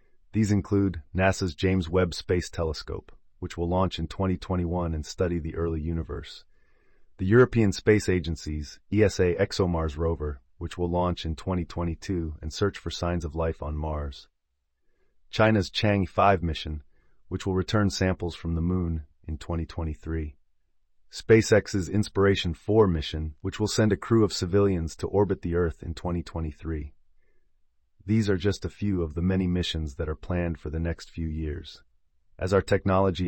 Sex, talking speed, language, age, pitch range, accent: male, 155 wpm, English, 30-49, 80-95 Hz, American